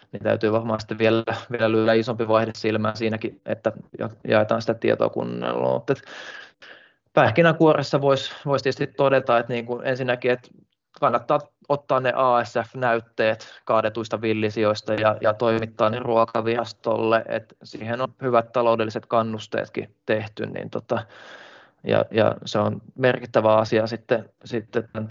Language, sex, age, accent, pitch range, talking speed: Finnish, male, 20-39, native, 110-125 Hz, 130 wpm